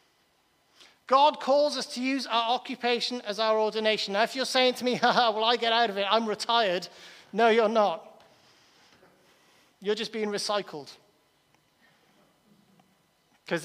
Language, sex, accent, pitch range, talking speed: English, male, British, 205-245 Hz, 145 wpm